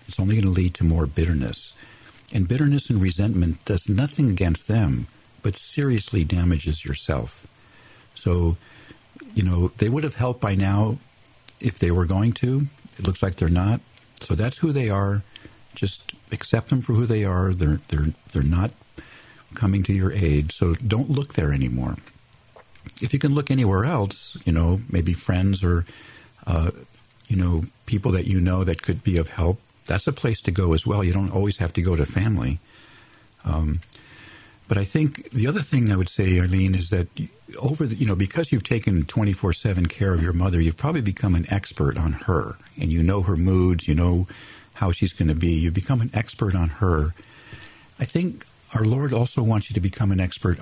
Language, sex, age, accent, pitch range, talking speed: English, male, 50-69, American, 90-115 Hz, 195 wpm